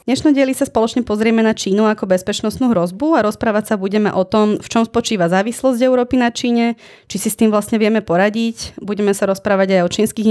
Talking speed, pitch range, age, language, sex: 215 wpm, 185-220 Hz, 20-39, Slovak, female